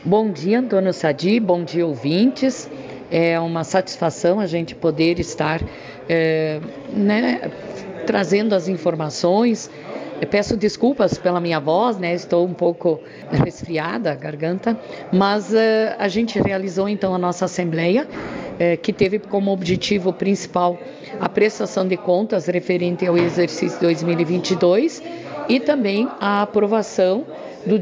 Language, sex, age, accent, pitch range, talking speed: Portuguese, female, 50-69, Brazilian, 175-210 Hz, 125 wpm